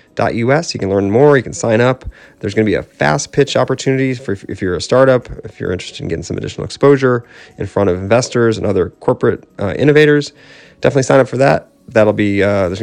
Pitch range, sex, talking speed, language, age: 105-130 Hz, male, 230 wpm, English, 30-49